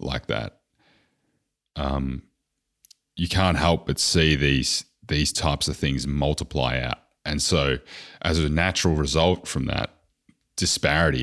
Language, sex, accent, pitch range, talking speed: English, male, Australian, 65-85 Hz, 130 wpm